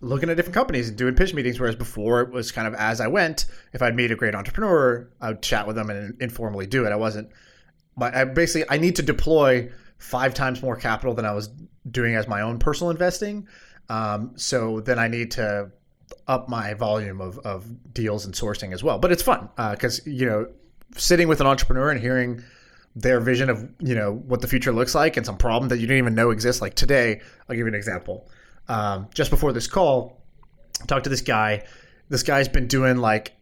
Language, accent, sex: English, American, male